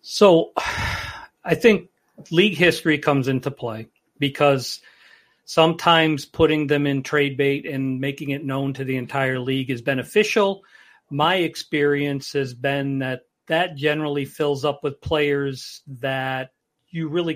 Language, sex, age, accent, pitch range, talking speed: English, male, 40-59, American, 135-165 Hz, 135 wpm